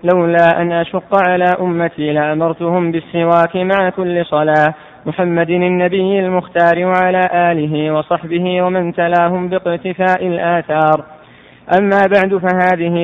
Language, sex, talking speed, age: Arabic, male, 105 wpm, 20-39